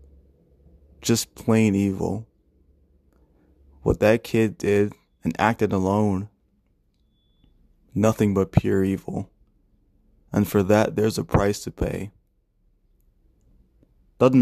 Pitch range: 80-110 Hz